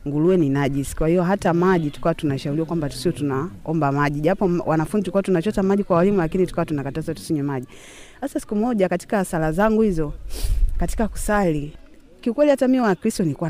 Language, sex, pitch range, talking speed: Swahili, female, 155-210 Hz, 175 wpm